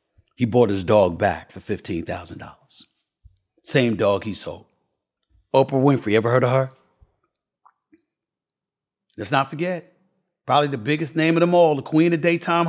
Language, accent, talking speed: English, American, 145 wpm